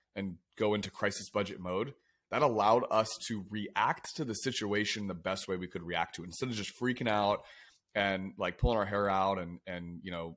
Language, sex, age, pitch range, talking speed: English, male, 30-49, 90-105 Hz, 210 wpm